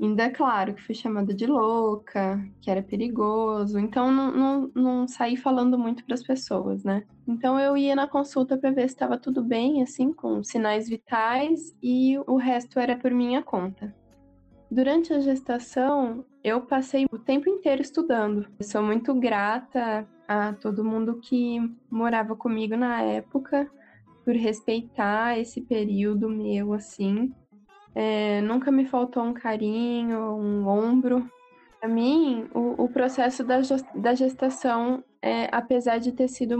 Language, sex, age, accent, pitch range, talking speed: Portuguese, female, 10-29, Brazilian, 215-255 Hz, 150 wpm